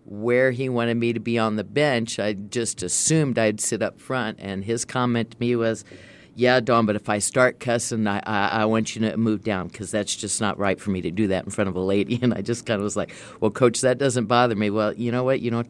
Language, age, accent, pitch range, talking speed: English, 50-69, American, 105-125 Hz, 270 wpm